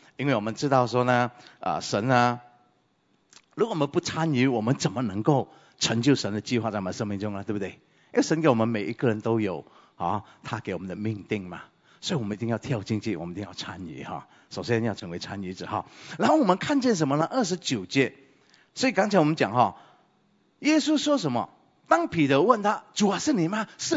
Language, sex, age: English, male, 30-49